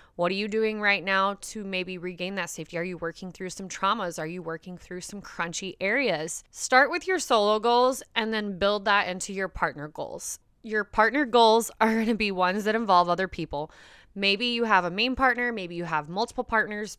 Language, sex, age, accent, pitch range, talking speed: English, female, 20-39, American, 185-245 Hz, 210 wpm